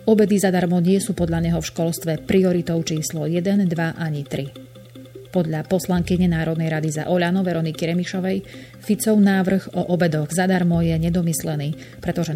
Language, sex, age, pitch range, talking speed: Slovak, female, 30-49, 155-185 Hz, 145 wpm